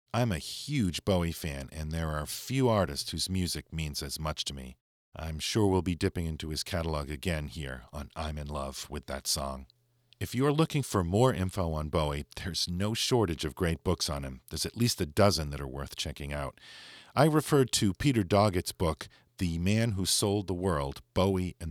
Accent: American